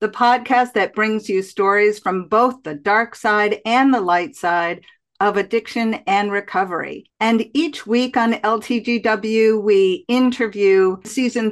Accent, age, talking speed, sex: American, 50-69, 140 wpm, female